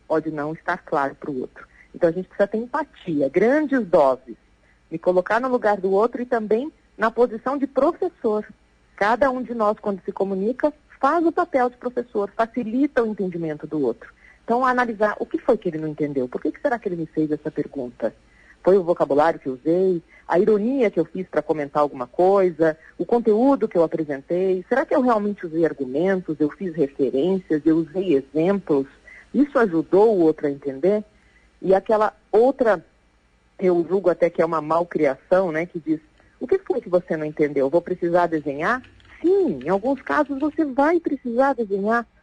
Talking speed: 190 wpm